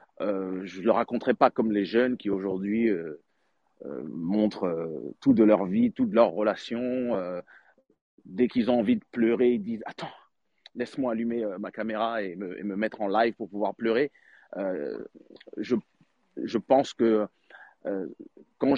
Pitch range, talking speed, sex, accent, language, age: 105-125 Hz, 180 wpm, male, French, French, 40-59